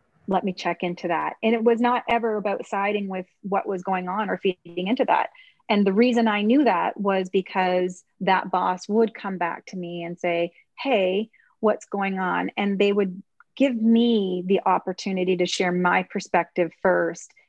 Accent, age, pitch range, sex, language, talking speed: American, 30-49, 175-200 Hz, female, English, 185 wpm